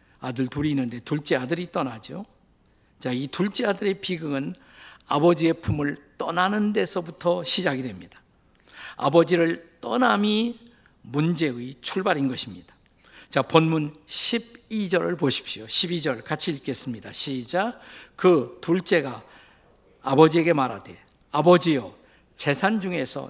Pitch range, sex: 135-175 Hz, male